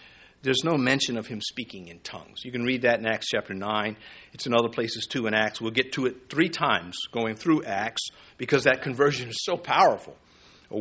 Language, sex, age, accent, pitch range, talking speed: English, male, 50-69, American, 120-155 Hz, 215 wpm